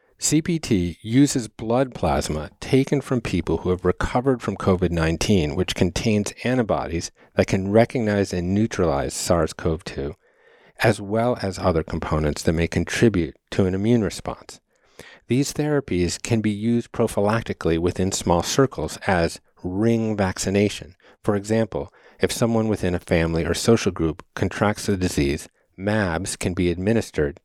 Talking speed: 135 wpm